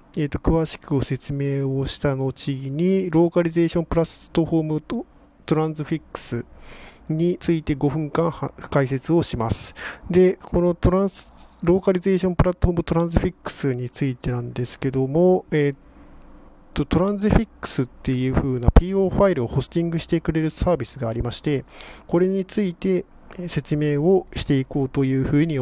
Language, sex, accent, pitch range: Japanese, male, native, 130-175 Hz